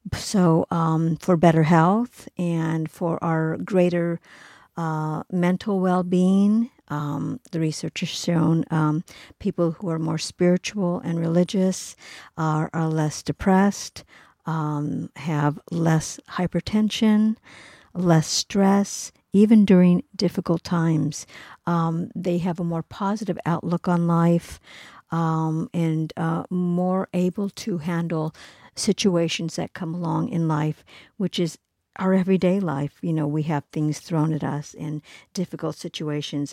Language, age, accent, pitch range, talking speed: English, 50-69, American, 155-180 Hz, 125 wpm